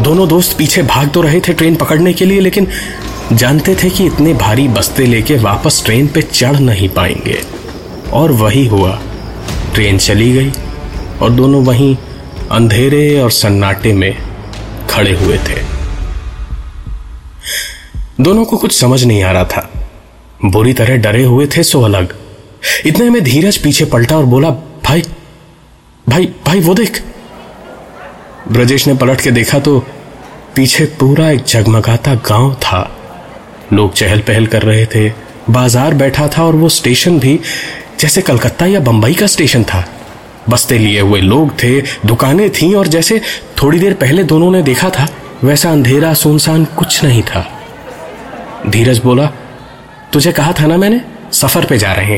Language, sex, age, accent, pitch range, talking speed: Hindi, male, 30-49, native, 105-155 Hz, 155 wpm